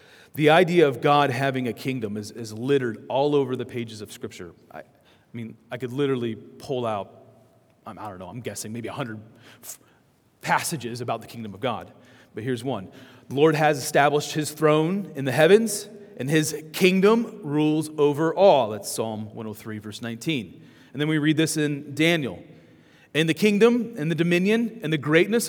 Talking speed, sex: 180 wpm, male